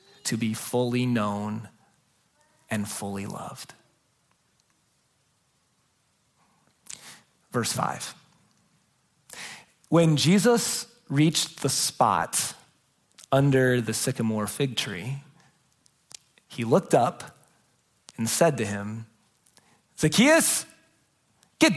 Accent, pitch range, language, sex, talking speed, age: American, 140-215 Hz, English, male, 75 wpm, 30-49